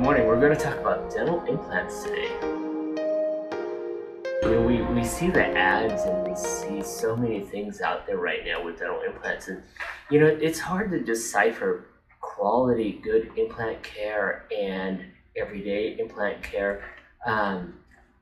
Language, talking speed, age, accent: English, 140 wpm, 30-49, American